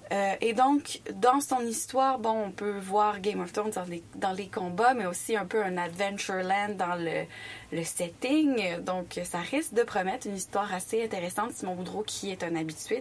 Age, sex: 20-39, female